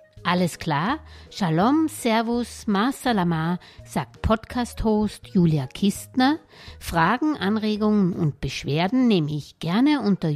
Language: German